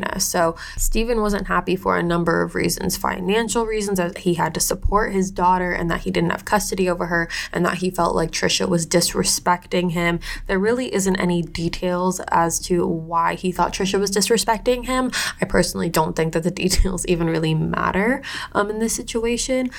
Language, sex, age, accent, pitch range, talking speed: English, female, 20-39, American, 170-210 Hz, 190 wpm